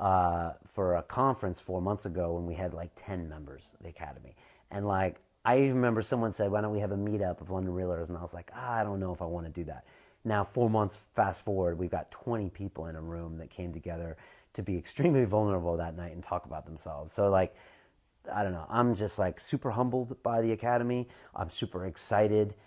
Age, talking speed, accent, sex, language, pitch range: 30-49, 230 wpm, American, male, English, 90-105 Hz